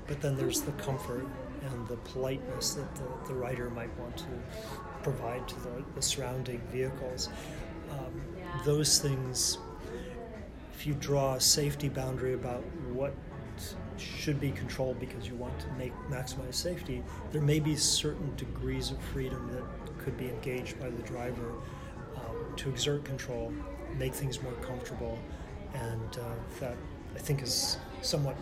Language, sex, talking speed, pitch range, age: English, male, 150 wpm, 120-140 Hz, 30-49